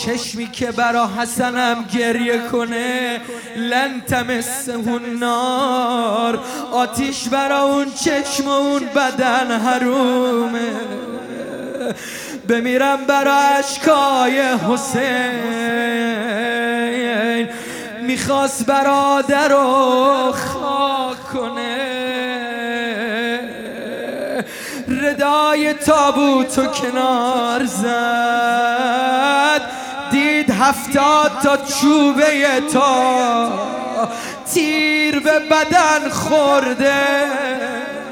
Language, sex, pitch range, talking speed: Arabic, male, 235-275 Hz, 65 wpm